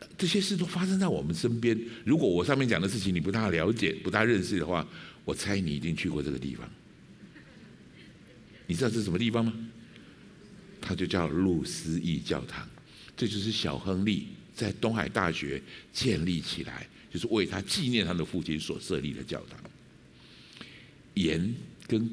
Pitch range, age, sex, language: 85-120 Hz, 60-79, male, Chinese